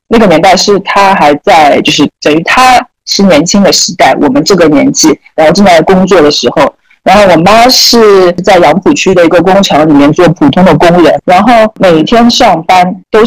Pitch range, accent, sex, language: 180-255 Hz, native, female, Chinese